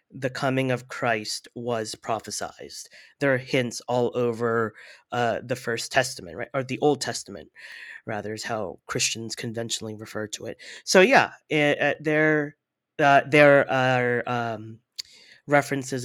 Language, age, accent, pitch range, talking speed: English, 30-49, American, 115-140 Hz, 140 wpm